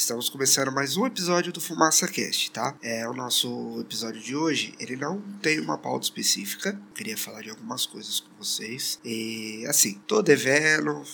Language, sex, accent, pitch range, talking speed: Portuguese, male, Brazilian, 115-160 Hz, 170 wpm